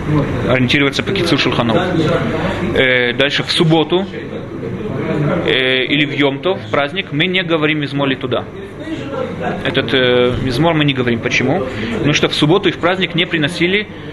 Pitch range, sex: 130-155 Hz, male